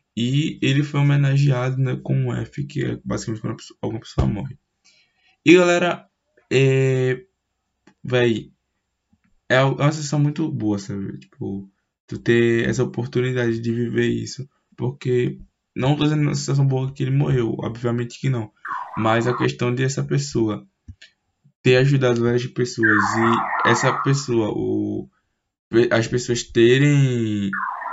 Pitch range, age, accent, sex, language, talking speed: 110-135 Hz, 10-29, Brazilian, male, Portuguese, 135 wpm